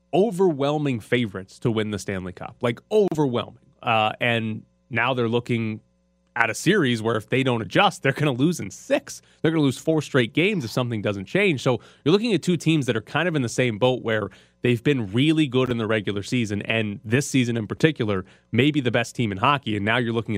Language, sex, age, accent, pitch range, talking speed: English, male, 30-49, American, 105-140 Hz, 225 wpm